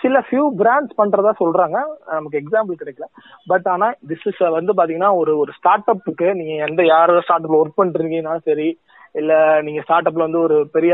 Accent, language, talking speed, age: native, Tamil, 175 wpm, 20-39